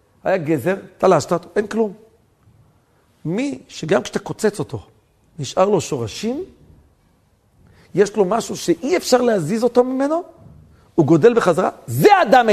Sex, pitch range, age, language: male, 135-225 Hz, 50-69, Hebrew